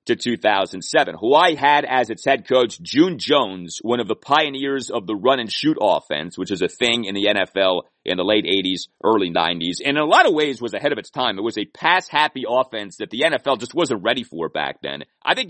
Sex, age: male, 30-49